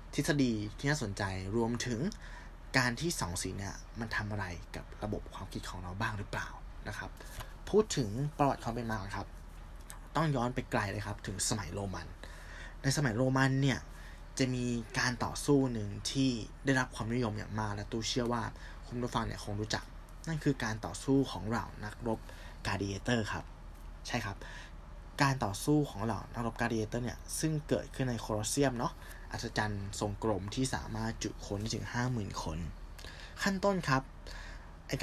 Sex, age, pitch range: male, 20-39, 90-125 Hz